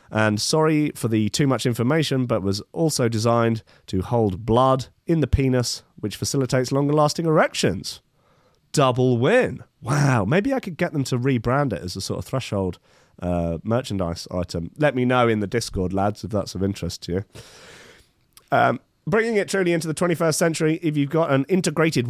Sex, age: male, 30-49